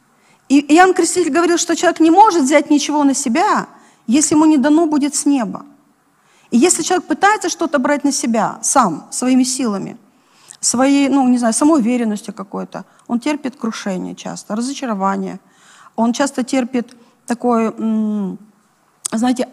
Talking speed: 145 wpm